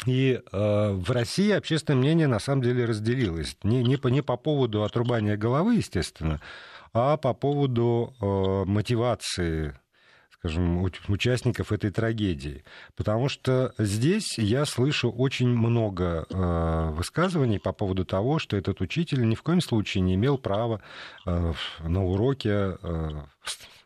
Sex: male